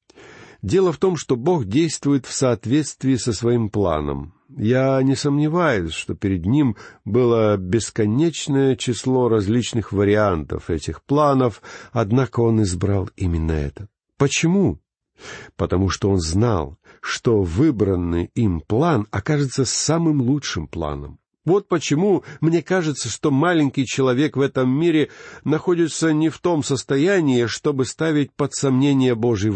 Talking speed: 125 wpm